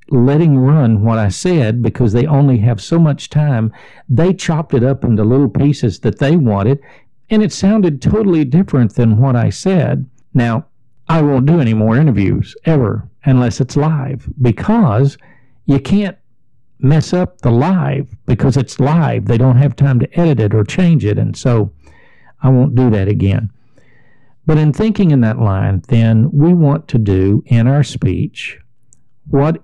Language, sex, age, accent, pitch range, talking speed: English, male, 50-69, American, 110-145 Hz, 170 wpm